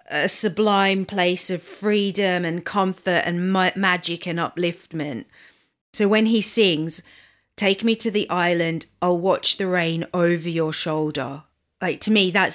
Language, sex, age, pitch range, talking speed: English, female, 40-59, 165-190 Hz, 150 wpm